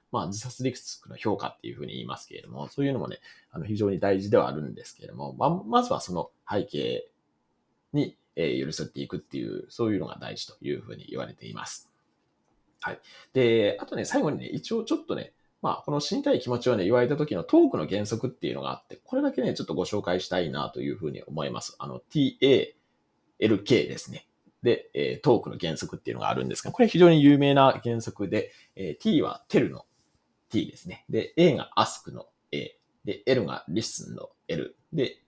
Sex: male